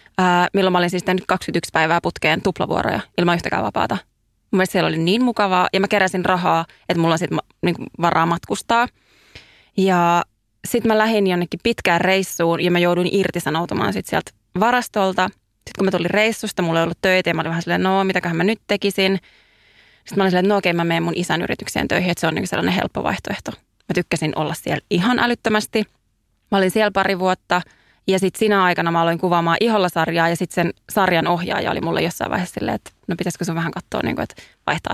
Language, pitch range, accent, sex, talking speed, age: Finnish, 170-200 Hz, native, female, 195 wpm, 20-39